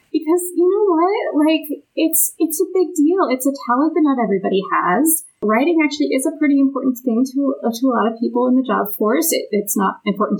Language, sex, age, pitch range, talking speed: English, female, 30-49, 205-280 Hz, 220 wpm